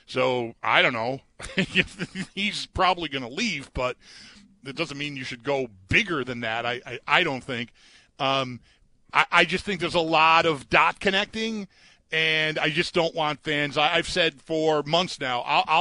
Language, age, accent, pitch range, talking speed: English, 40-59, American, 140-185 Hz, 180 wpm